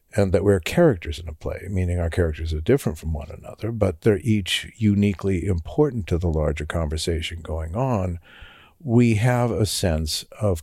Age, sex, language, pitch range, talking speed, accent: 60-79, male, English, 85-115 Hz, 175 wpm, American